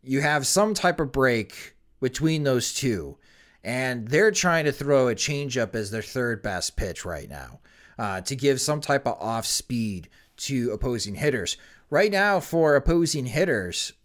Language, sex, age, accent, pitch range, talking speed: English, male, 30-49, American, 110-150 Hz, 165 wpm